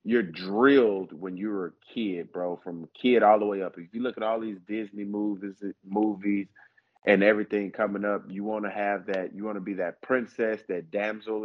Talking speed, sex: 210 wpm, male